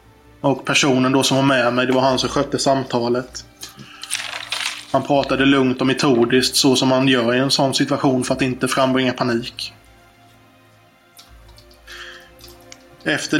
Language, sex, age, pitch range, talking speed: Swedish, male, 20-39, 125-140 Hz, 145 wpm